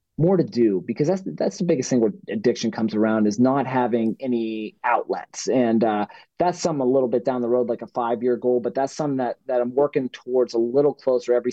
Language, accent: English, American